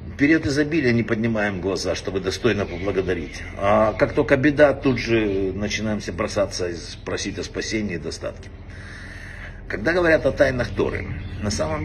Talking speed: 150 wpm